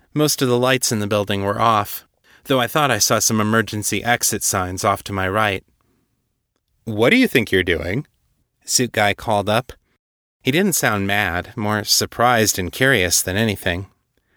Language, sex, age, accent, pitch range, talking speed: English, male, 30-49, American, 100-125 Hz, 175 wpm